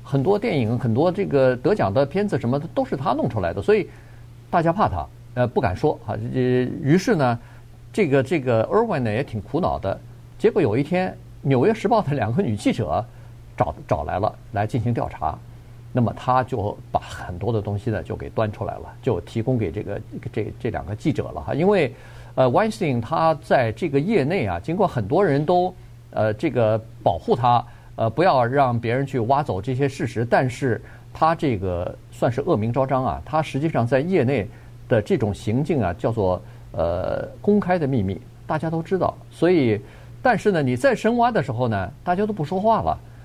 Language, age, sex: Chinese, 50-69, male